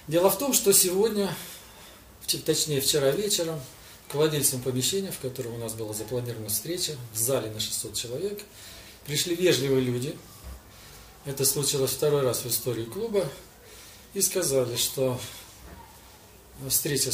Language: Russian